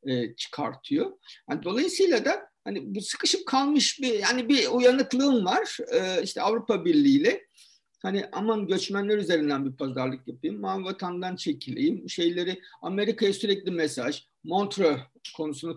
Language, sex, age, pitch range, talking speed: Turkish, male, 50-69, 150-230 Hz, 125 wpm